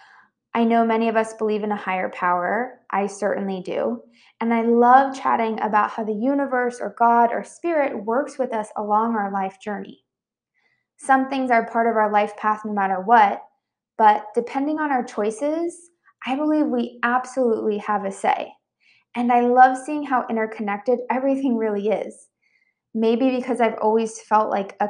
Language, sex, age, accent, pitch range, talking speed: English, female, 20-39, American, 215-265 Hz, 170 wpm